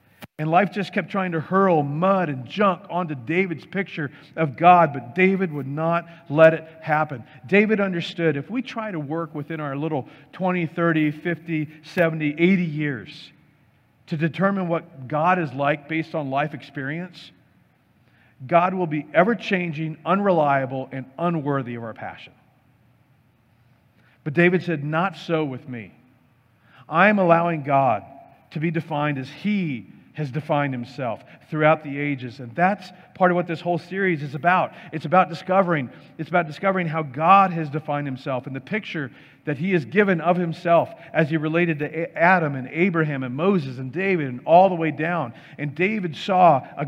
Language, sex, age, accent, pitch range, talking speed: English, male, 50-69, American, 145-175 Hz, 165 wpm